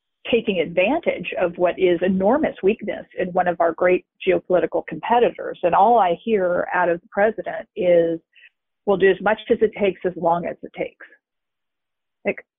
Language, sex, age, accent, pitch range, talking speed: English, female, 40-59, American, 180-235 Hz, 170 wpm